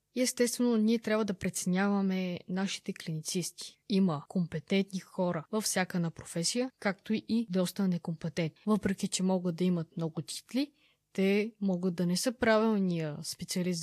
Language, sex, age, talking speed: Bulgarian, female, 20-39, 140 wpm